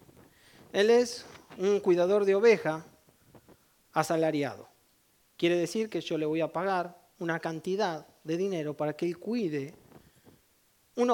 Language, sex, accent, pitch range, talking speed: English, male, Argentinian, 155-205 Hz, 130 wpm